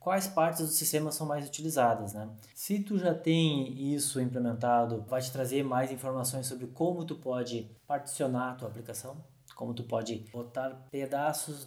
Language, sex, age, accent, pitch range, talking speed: Portuguese, male, 20-39, Brazilian, 125-150 Hz, 165 wpm